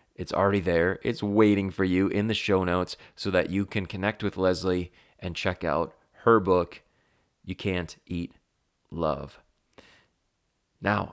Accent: American